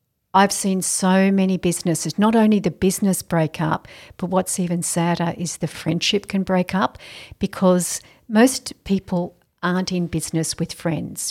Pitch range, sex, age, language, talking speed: 170-200 Hz, female, 50-69, English, 155 wpm